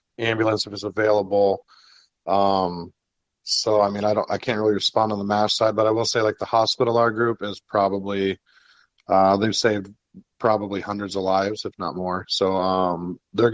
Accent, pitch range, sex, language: American, 95-110 Hz, male, English